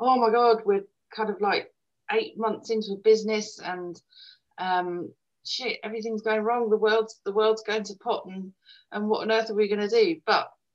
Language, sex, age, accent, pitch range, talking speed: English, female, 30-49, British, 155-215 Hz, 195 wpm